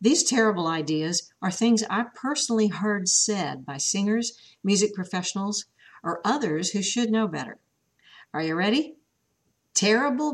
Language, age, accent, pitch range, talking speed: English, 50-69, American, 175-230 Hz, 135 wpm